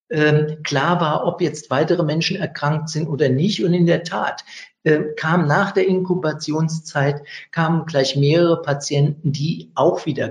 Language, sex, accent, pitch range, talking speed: German, male, German, 140-180 Hz, 150 wpm